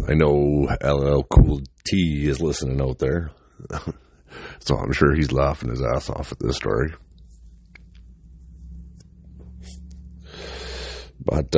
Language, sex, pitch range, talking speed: English, male, 65-80 Hz, 110 wpm